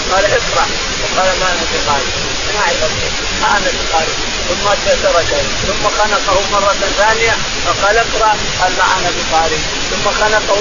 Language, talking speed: Arabic, 135 wpm